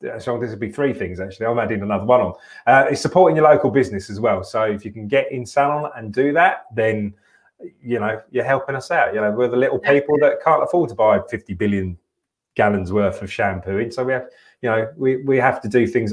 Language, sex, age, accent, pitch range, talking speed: English, male, 30-49, British, 100-130 Hz, 245 wpm